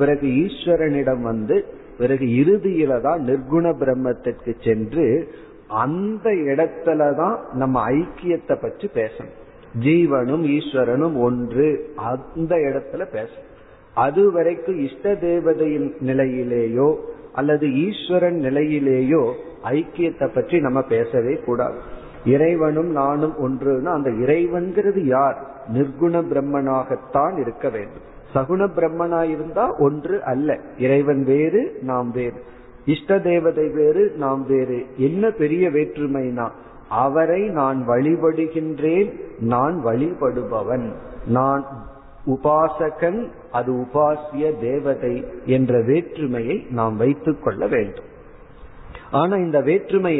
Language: Tamil